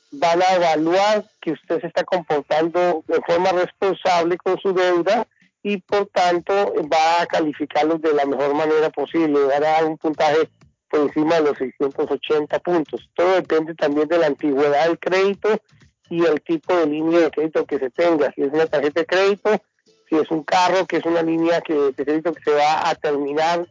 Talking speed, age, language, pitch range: 185 wpm, 50-69, Spanish, 155-180 Hz